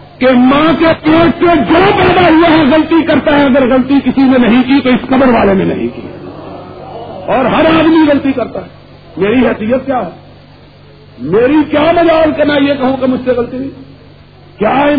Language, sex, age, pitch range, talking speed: Urdu, male, 50-69, 215-280 Hz, 190 wpm